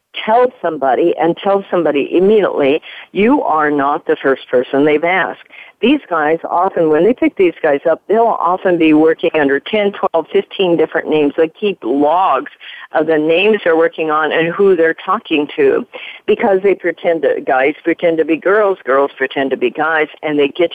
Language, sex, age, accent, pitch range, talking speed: English, female, 50-69, American, 145-195 Hz, 185 wpm